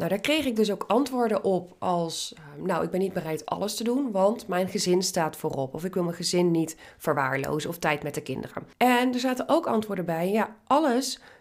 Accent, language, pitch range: Dutch, Dutch, 180-240 Hz